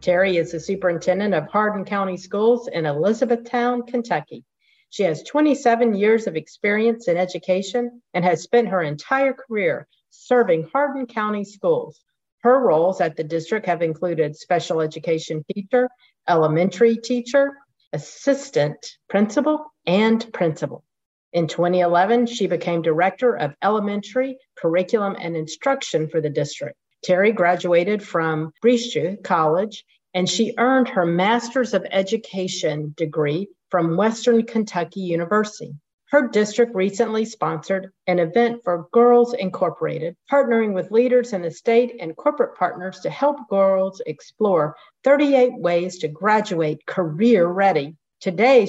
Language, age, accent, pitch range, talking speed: English, 50-69, American, 170-240 Hz, 125 wpm